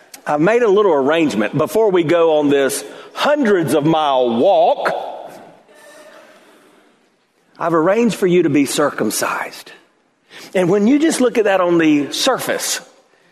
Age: 50-69